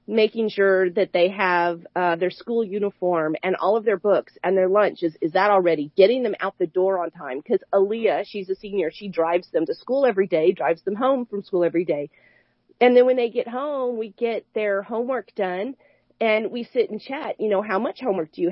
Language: English